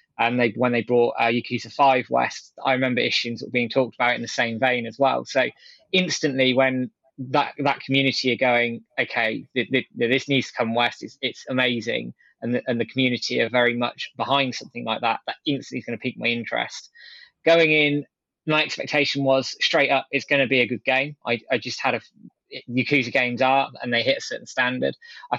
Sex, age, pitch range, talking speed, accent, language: male, 20-39, 130-150 Hz, 215 wpm, British, English